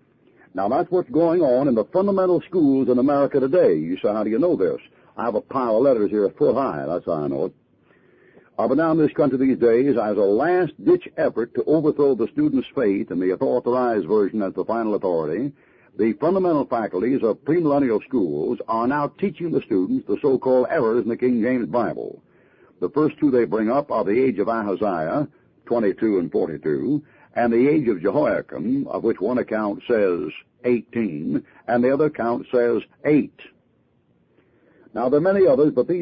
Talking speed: 190 wpm